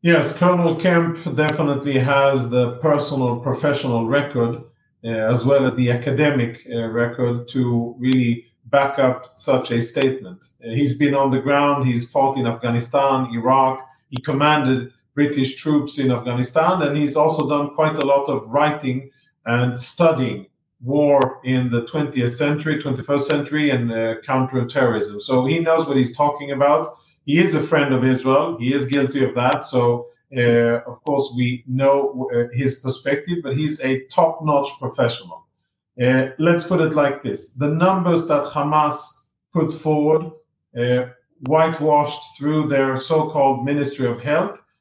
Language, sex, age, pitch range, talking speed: English, male, 40-59, 130-155 Hz, 150 wpm